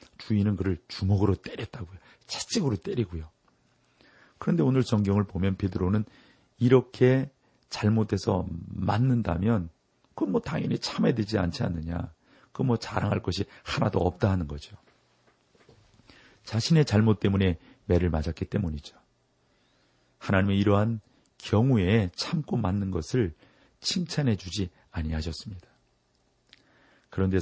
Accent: native